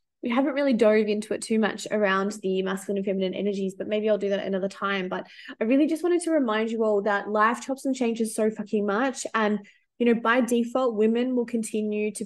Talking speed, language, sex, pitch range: 230 wpm, English, female, 205-255 Hz